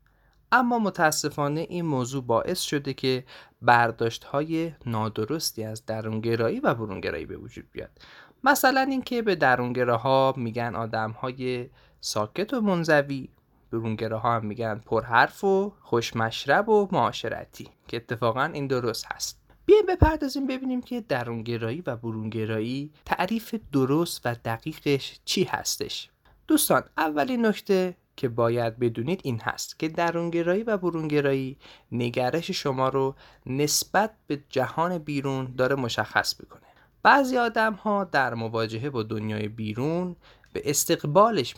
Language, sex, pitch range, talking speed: Persian, male, 115-175 Hz, 120 wpm